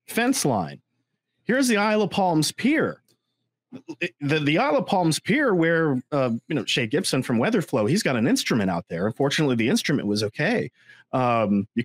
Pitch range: 130-195 Hz